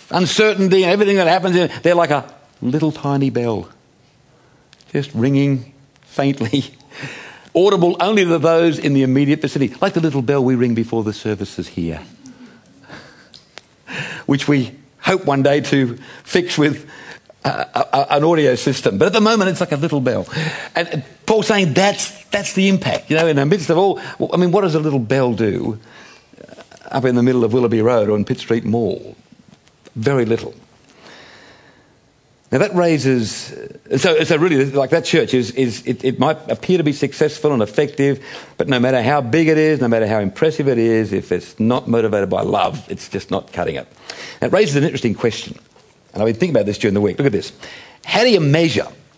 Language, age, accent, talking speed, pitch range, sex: English, 50-69, British, 195 wpm, 125-160 Hz, male